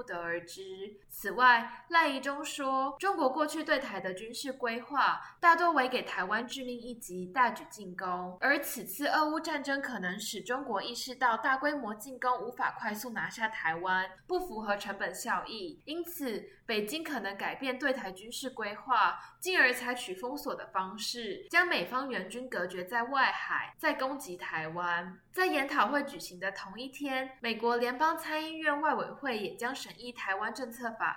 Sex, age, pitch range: female, 10-29, 210-285 Hz